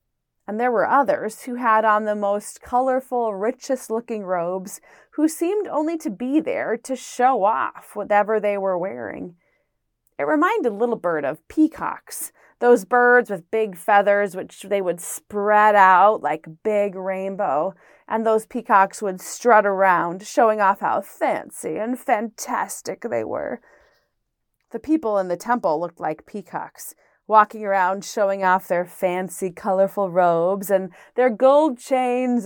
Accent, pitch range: American, 185-245 Hz